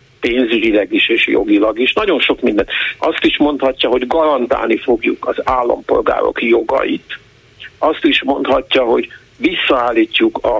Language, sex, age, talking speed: Hungarian, male, 50-69, 130 wpm